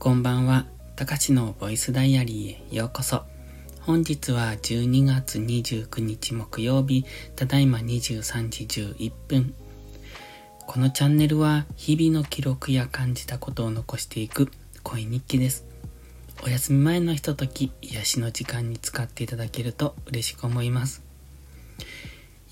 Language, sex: Japanese, male